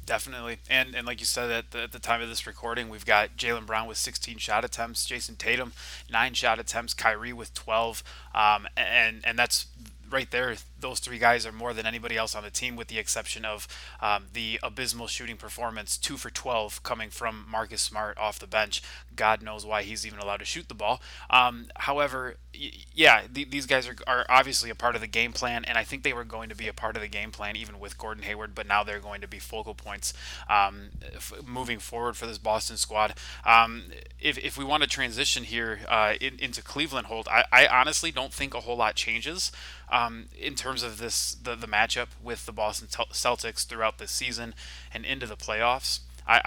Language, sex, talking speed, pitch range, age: English, male, 210 wpm, 105-120 Hz, 20-39